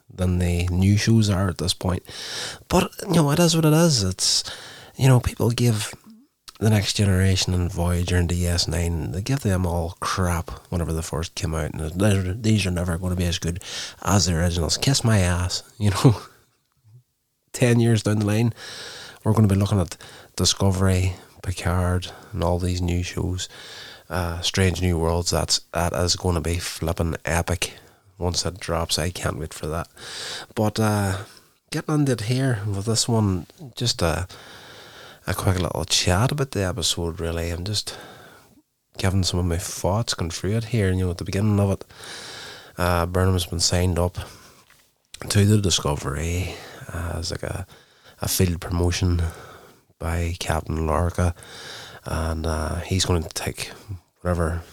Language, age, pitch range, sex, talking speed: English, 20-39, 85-105 Hz, male, 170 wpm